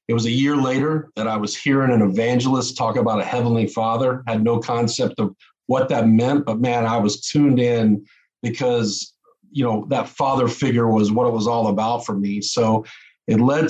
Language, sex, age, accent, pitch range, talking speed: English, male, 40-59, American, 110-135 Hz, 200 wpm